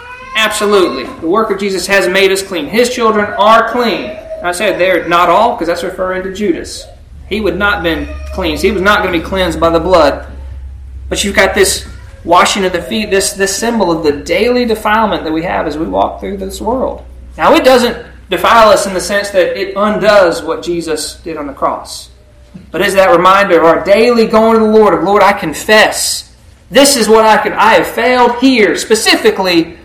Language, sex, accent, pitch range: English, male, American, 175-230 Hz